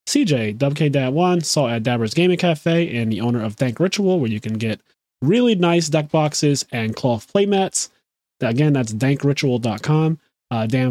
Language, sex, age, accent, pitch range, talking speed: English, male, 20-39, American, 130-175 Hz, 160 wpm